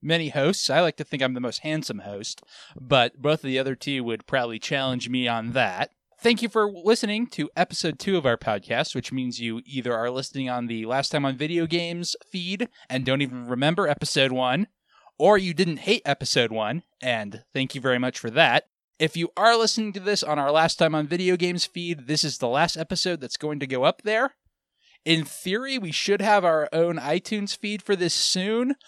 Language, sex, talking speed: English, male, 215 wpm